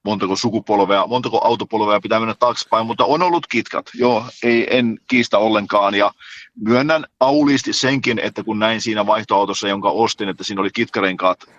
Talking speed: 160 wpm